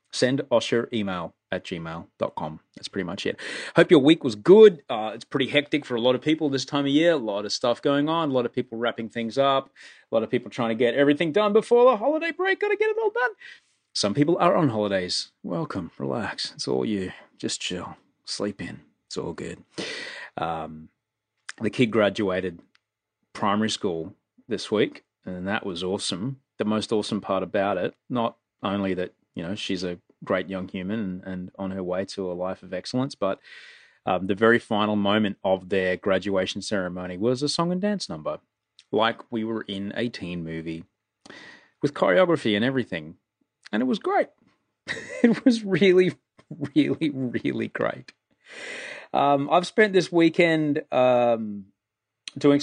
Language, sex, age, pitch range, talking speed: English, male, 30-49, 100-150 Hz, 180 wpm